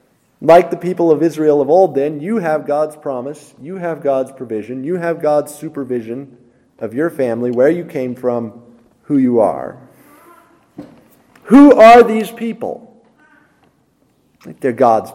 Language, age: English, 40-59